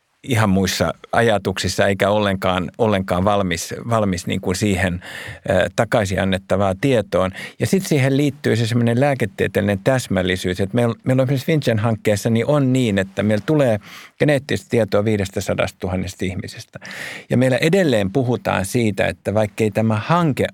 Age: 50-69